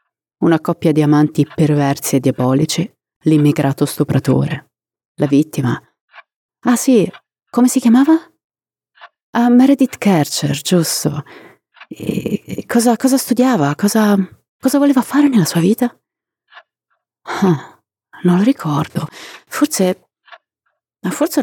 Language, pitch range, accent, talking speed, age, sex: Italian, 150-205 Hz, native, 105 wpm, 30-49, female